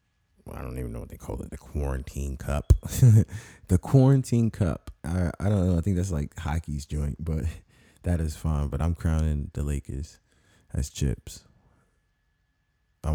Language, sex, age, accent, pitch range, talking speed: English, male, 20-39, American, 75-90 Hz, 165 wpm